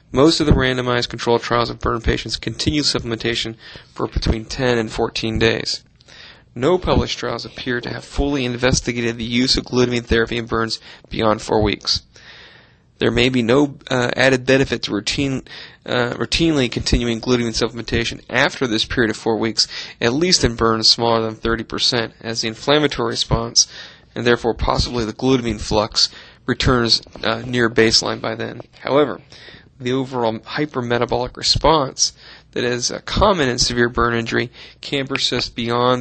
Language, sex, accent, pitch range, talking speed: English, male, American, 115-130 Hz, 155 wpm